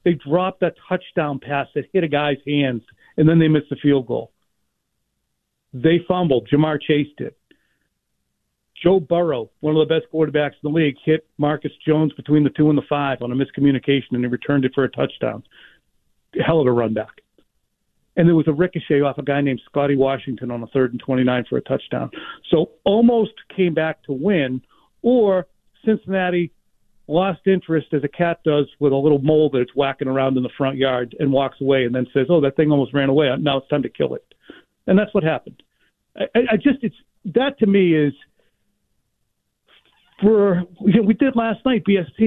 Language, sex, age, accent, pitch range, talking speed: English, male, 40-59, American, 140-180 Hz, 200 wpm